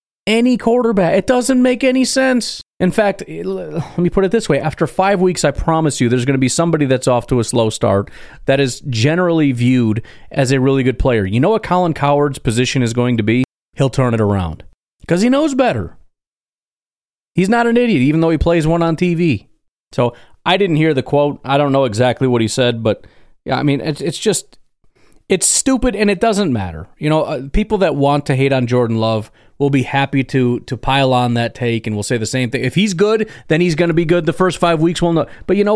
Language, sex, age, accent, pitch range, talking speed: English, male, 30-49, American, 130-180 Hz, 235 wpm